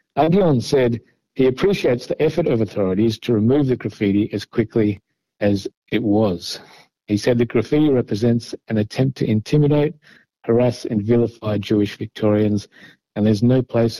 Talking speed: 150 wpm